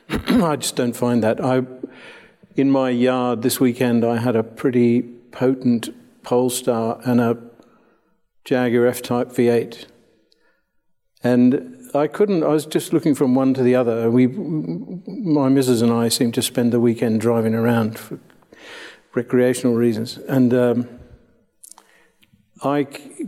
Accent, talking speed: British, 135 wpm